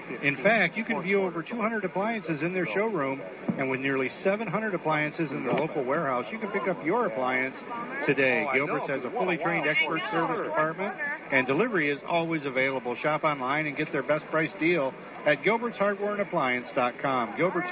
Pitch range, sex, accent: 140-195 Hz, male, American